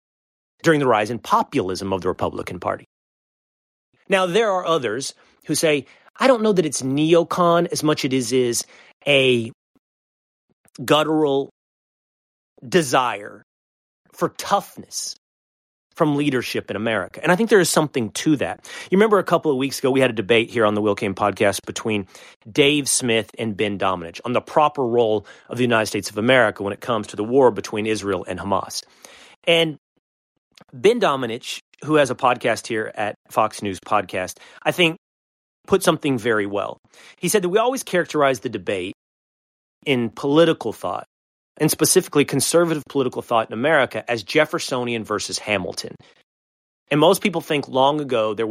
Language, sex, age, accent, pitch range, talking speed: English, male, 30-49, American, 105-155 Hz, 165 wpm